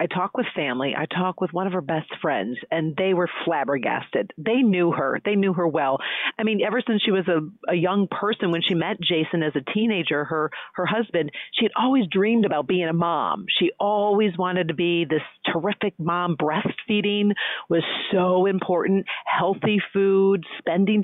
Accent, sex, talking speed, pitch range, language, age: American, female, 190 wpm, 165-205 Hz, English, 40-59